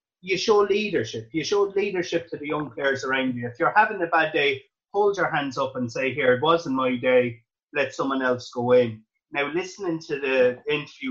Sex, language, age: male, English, 30-49